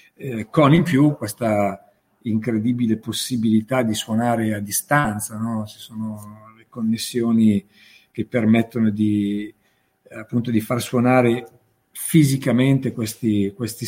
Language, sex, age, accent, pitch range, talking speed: Italian, male, 50-69, native, 115-140 Hz, 110 wpm